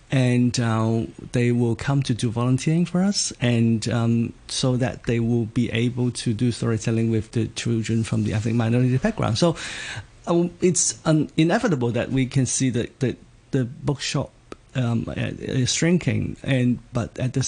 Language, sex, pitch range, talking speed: English, male, 115-130 Hz, 165 wpm